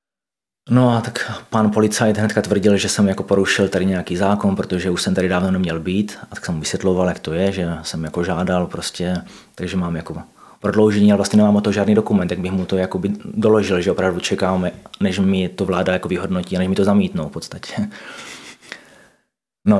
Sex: male